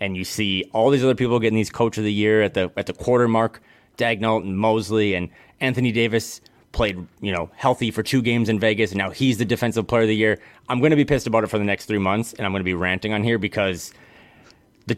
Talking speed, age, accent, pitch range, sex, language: 260 wpm, 30-49, American, 100-125 Hz, male, English